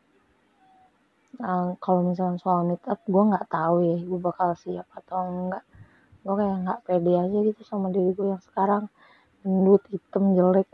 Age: 20-39